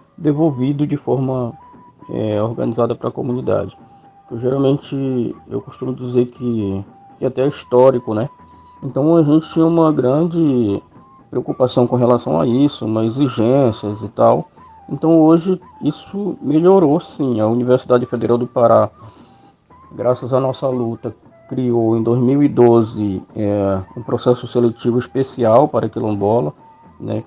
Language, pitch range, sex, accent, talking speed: Portuguese, 110-135 Hz, male, Brazilian, 130 wpm